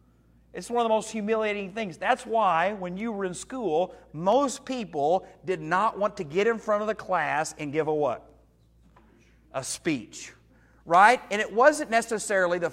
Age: 40-59